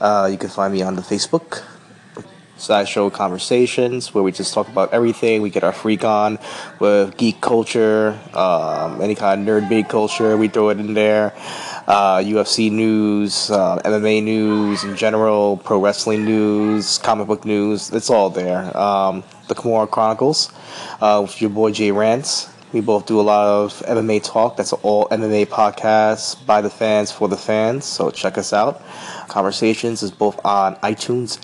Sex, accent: male, American